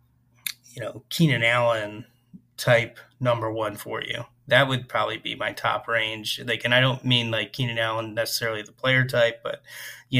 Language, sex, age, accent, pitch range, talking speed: English, male, 30-49, American, 115-125 Hz, 175 wpm